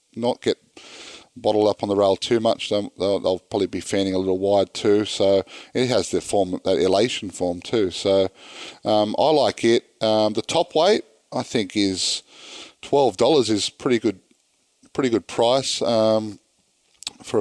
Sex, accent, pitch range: male, Australian, 95-120 Hz